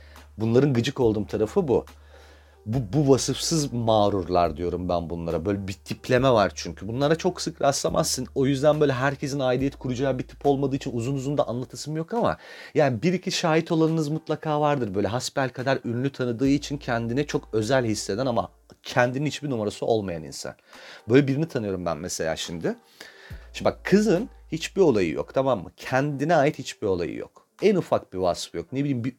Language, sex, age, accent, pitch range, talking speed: Turkish, male, 40-59, native, 90-150 Hz, 175 wpm